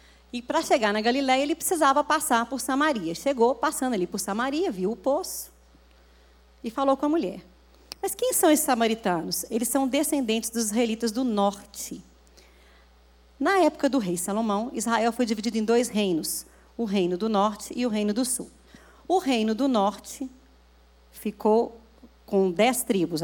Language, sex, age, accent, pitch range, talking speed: Portuguese, female, 40-59, Brazilian, 185-260 Hz, 165 wpm